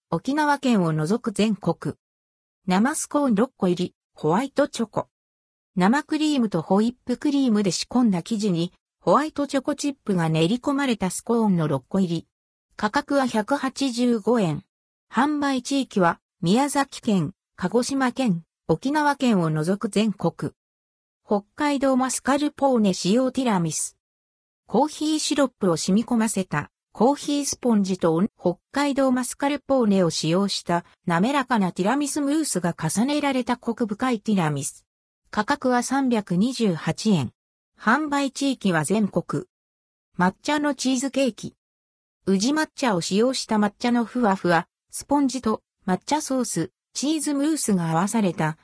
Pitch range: 175-270 Hz